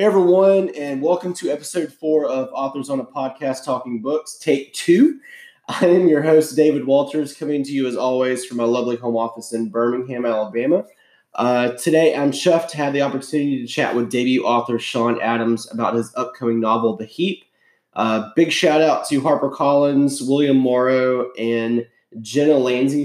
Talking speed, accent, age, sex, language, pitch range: 175 wpm, American, 20-39, male, English, 120-150 Hz